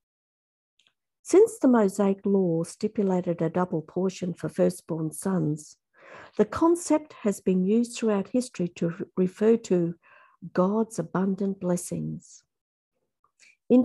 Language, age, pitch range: English, 50-69, 180-250 Hz